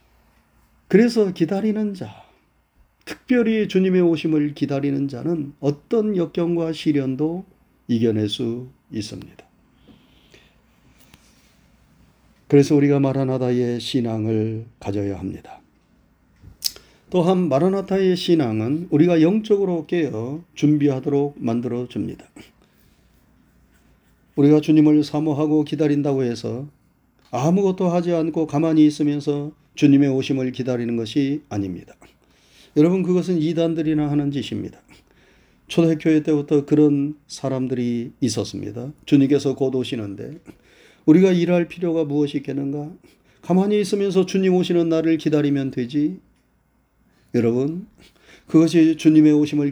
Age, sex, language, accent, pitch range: 40-59, male, Korean, native, 135-170 Hz